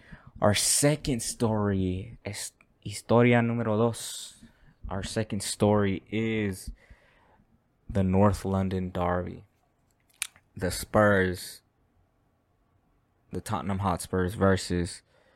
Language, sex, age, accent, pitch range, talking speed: English, male, 20-39, American, 90-105 Hz, 80 wpm